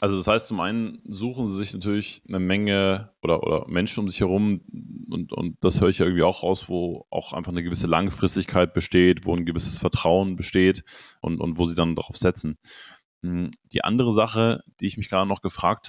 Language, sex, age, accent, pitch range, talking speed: German, male, 30-49, German, 85-100 Hz, 205 wpm